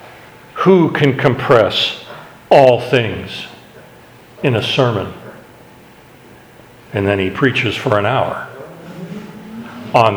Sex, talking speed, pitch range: male, 95 wpm, 115-145 Hz